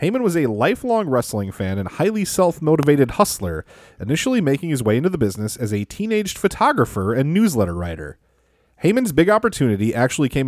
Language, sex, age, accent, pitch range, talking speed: English, male, 30-49, American, 105-170 Hz, 165 wpm